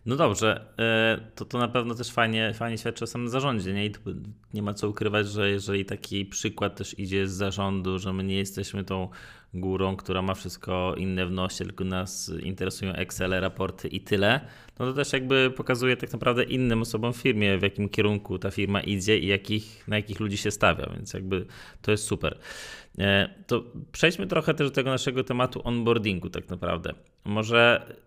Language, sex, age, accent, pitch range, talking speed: Polish, male, 20-39, native, 95-120 Hz, 190 wpm